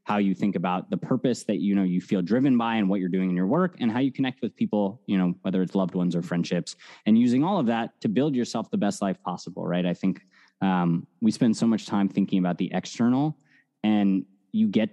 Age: 20-39